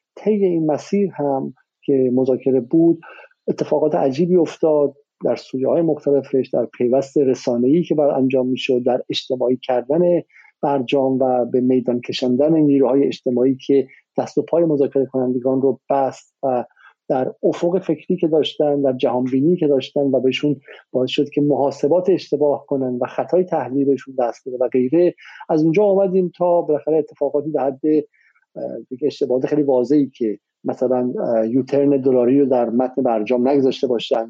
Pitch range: 130-155 Hz